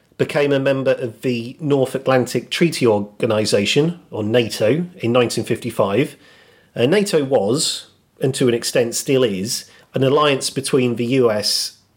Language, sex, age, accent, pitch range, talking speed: English, male, 40-59, British, 115-145 Hz, 135 wpm